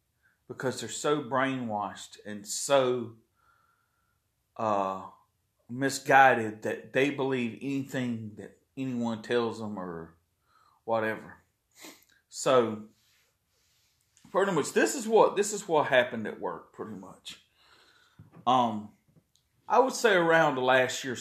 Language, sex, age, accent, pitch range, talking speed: English, male, 40-59, American, 105-140 Hz, 115 wpm